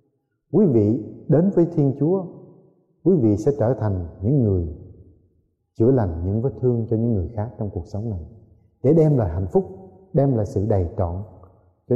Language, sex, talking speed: Vietnamese, male, 185 wpm